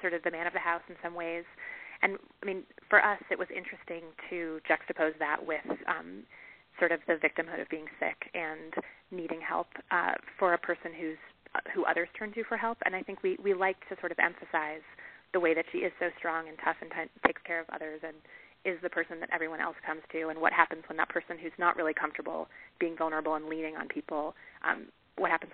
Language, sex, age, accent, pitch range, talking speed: English, female, 30-49, American, 160-185 Hz, 225 wpm